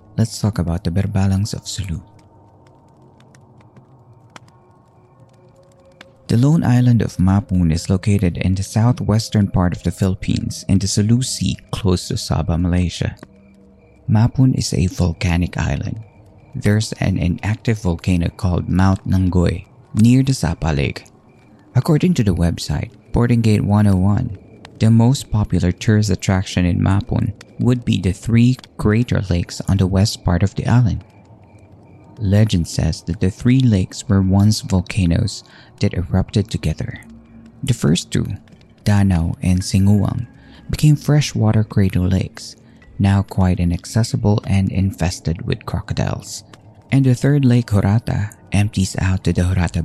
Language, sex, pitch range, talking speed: Filipino, male, 95-120 Hz, 130 wpm